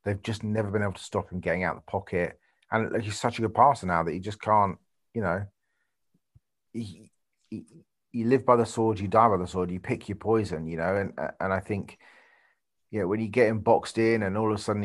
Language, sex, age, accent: English, male, 30-49, British